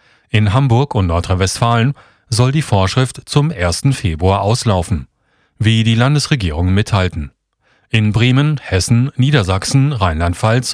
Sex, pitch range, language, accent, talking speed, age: male, 95-130 Hz, German, German, 110 wpm, 40-59